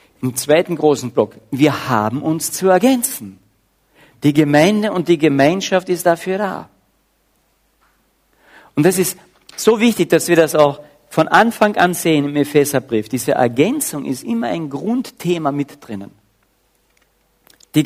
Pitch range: 125-180 Hz